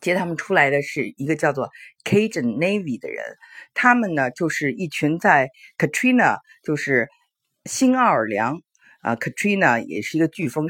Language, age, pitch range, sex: Chinese, 50-69, 145-220 Hz, female